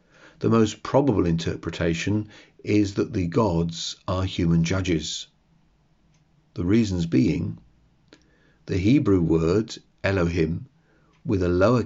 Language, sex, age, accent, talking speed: English, male, 50-69, British, 105 wpm